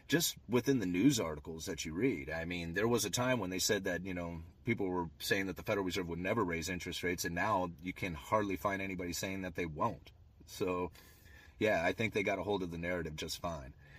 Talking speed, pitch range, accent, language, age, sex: 240 wpm, 90-105 Hz, American, English, 30-49, male